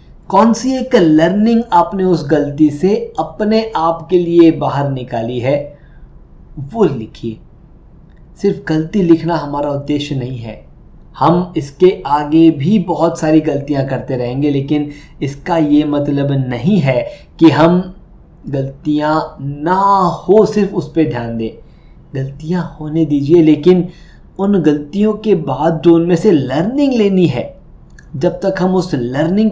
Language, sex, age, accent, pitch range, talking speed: Hindi, male, 20-39, native, 130-175 Hz, 140 wpm